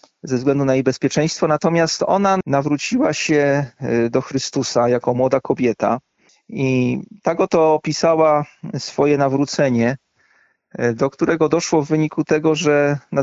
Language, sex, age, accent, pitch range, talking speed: Polish, male, 40-59, native, 130-160 Hz, 125 wpm